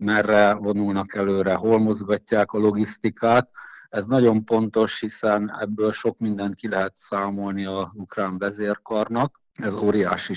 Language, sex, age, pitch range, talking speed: Hungarian, male, 50-69, 100-115 Hz, 125 wpm